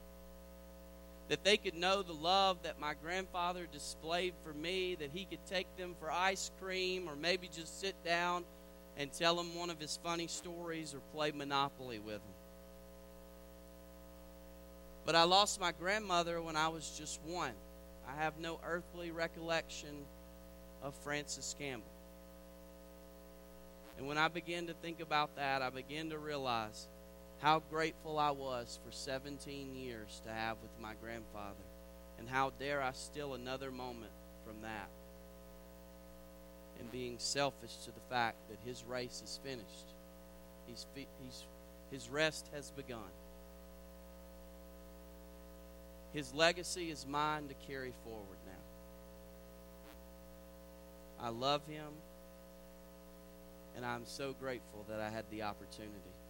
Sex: male